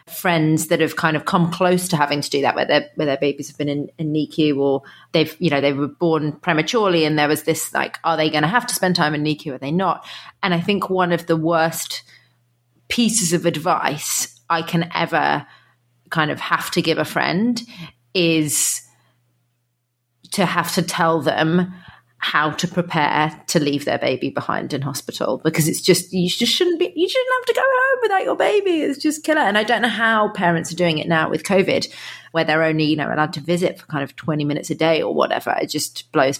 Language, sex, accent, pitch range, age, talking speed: English, female, British, 150-180 Hz, 30-49, 220 wpm